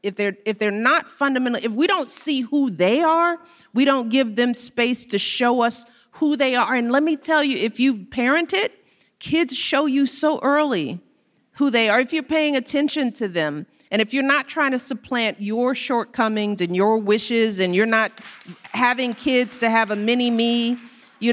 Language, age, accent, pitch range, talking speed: English, 40-59, American, 205-260 Hz, 195 wpm